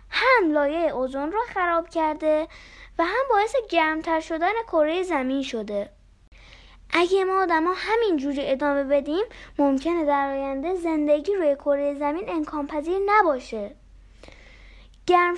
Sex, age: female, 10-29